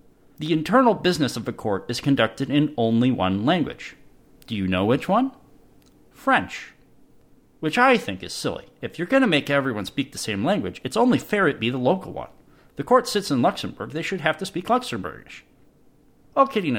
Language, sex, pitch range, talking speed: English, male, 110-155 Hz, 195 wpm